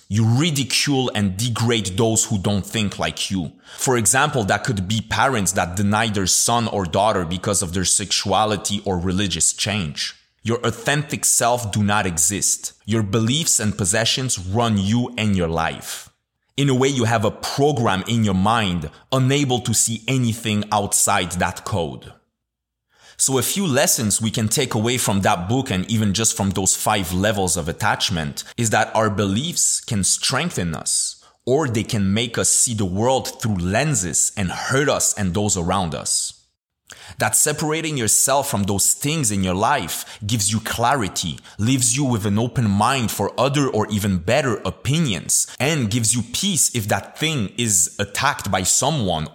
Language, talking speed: English, 170 wpm